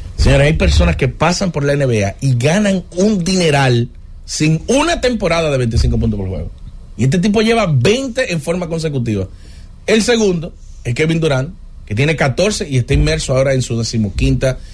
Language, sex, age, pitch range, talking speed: English, male, 30-49, 110-150 Hz, 175 wpm